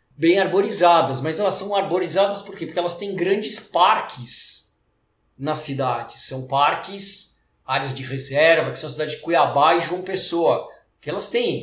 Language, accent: Portuguese, Brazilian